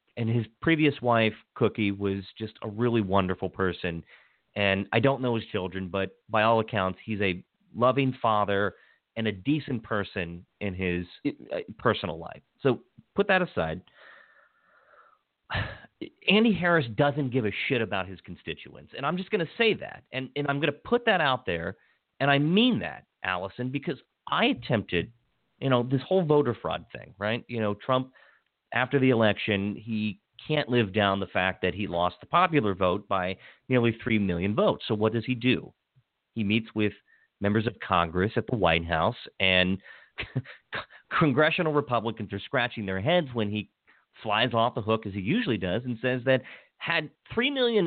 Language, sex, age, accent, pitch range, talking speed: English, male, 40-59, American, 100-140 Hz, 170 wpm